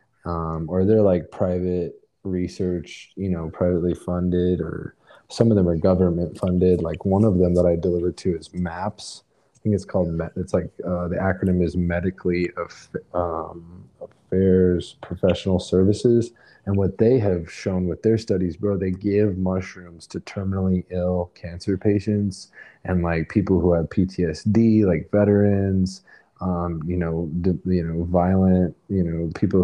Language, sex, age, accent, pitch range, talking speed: English, male, 20-39, American, 85-95 Hz, 160 wpm